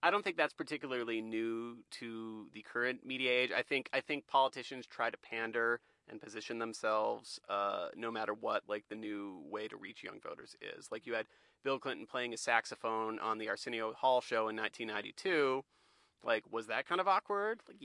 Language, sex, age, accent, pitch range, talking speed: English, male, 30-49, American, 110-130 Hz, 200 wpm